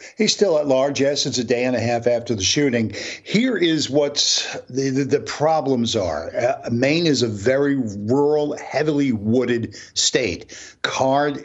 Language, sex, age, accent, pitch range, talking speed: English, male, 50-69, American, 115-135 Hz, 170 wpm